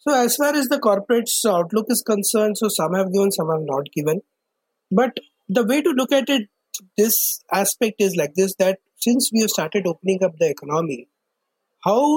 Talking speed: 190 wpm